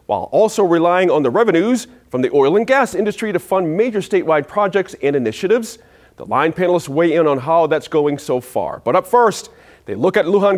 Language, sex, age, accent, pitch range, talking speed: English, male, 40-59, American, 140-220 Hz, 210 wpm